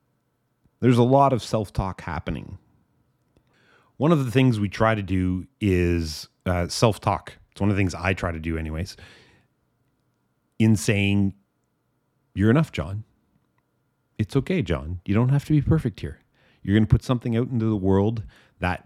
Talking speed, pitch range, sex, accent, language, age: 165 wpm, 90-120 Hz, male, American, English, 30-49